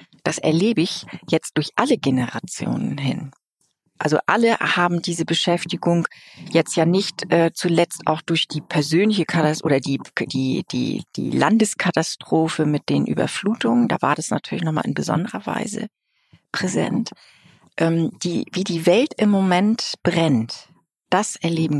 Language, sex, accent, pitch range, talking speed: German, female, German, 155-190 Hz, 130 wpm